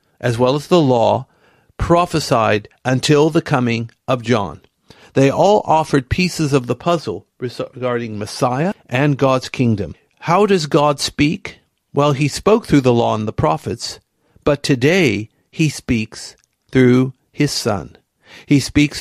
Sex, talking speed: male, 140 wpm